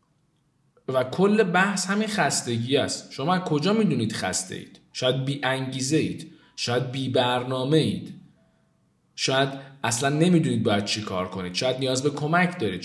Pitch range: 105-155 Hz